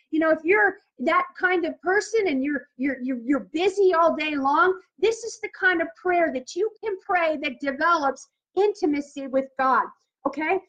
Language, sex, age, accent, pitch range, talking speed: English, female, 40-59, American, 285-365 Hz, 180 wpm